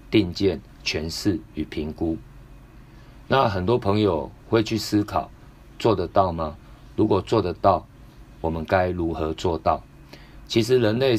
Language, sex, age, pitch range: Chinese, male, 50-69, 90-115 Hz